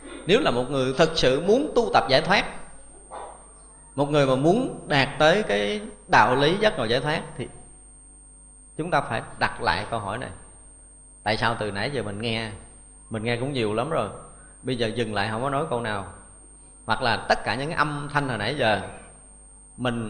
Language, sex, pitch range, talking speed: Vietnamese, male, 105-145 Hz, 195 wpm